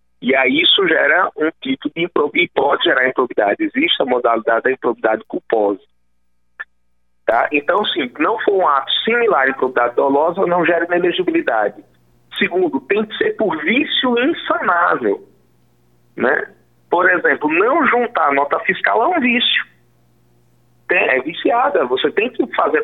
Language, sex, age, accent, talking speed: Portuguese, male, 50-69, Brazilian, 145 wpm